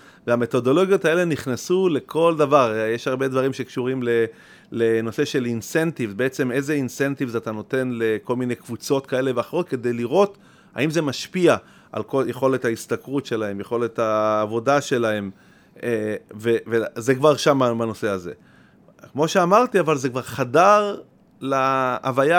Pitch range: 125-170 Hz